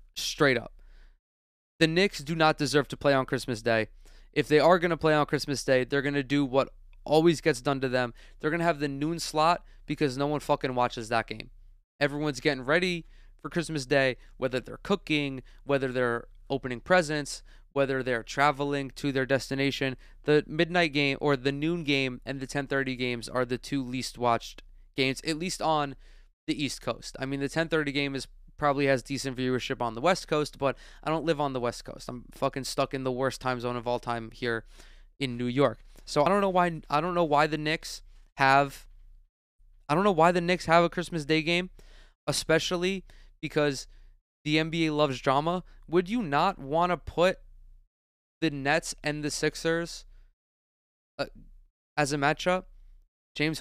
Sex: male